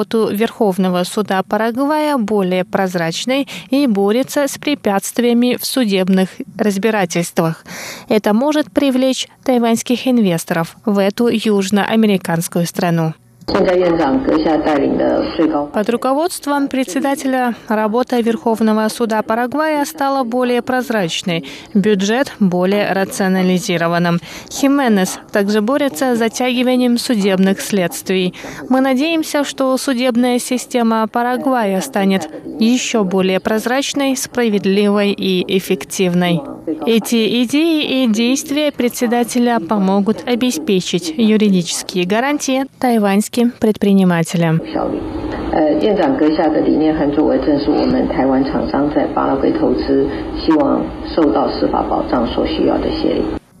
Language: Russian